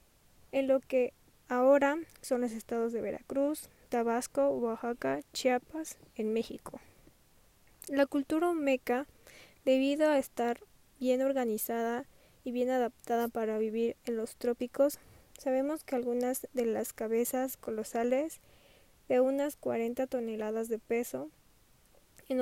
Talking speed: 120 wpm